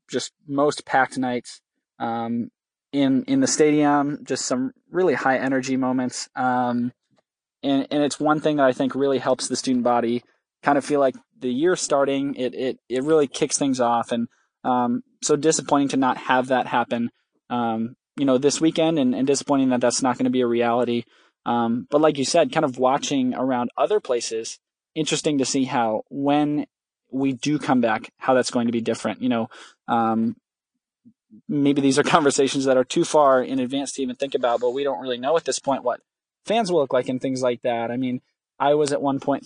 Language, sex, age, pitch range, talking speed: English, male, 20-39, 125-145 Hz, 205 wpm